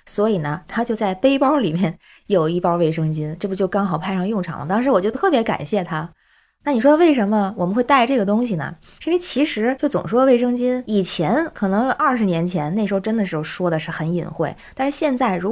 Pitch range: 175-245 Hz